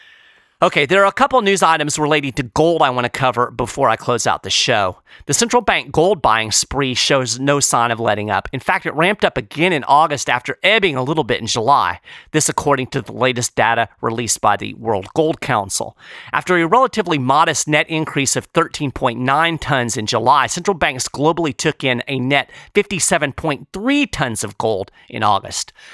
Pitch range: 125-170 Hz